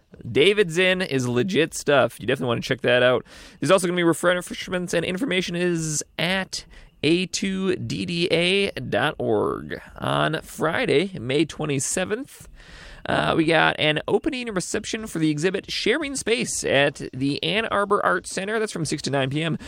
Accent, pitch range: American, 140-195 Hz